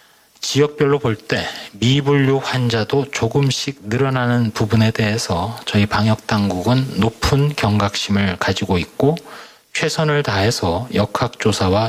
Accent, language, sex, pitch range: native, Korean, male, 110-140 Hz